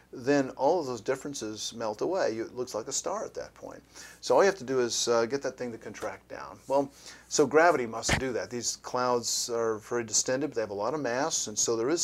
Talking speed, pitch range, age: 255 wpm, 110-130 Hz, 50-69